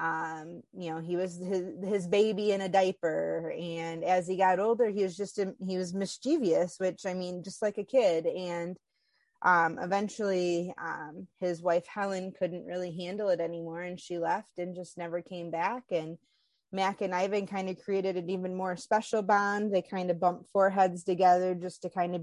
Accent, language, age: American, English, 20-39